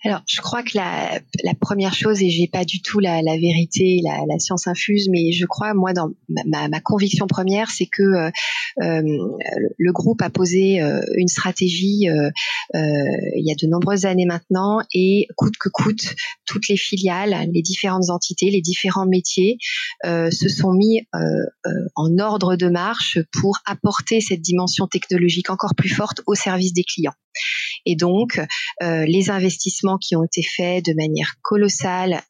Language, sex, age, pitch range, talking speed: French, female, 30-49, 170-195 Hz, 175 wpm